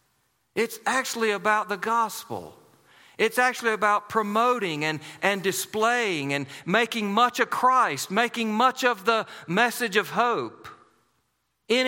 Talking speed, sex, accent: 125 wpm, male, American